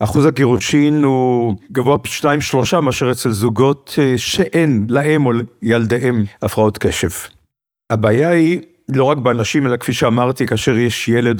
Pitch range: 110-135 Hz